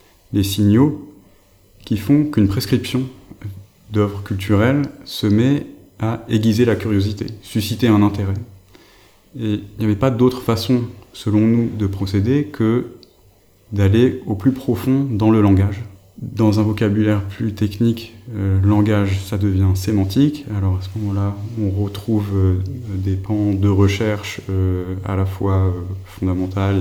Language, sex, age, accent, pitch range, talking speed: French, male, 20-39, French, 95-110 Hz, 135 wpm